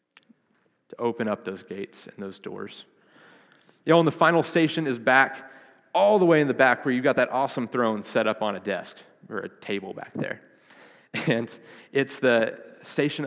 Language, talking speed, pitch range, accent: English, 190 wpm, 115-145 Hz, American